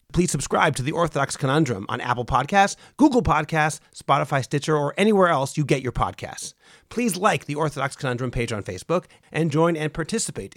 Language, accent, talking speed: English, American, 180 wpm